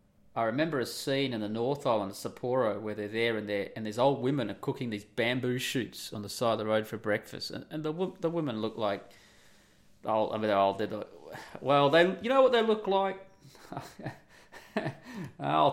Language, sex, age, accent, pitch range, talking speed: English, male, 30-49, Australian, 105-135 Hz, 200 wpm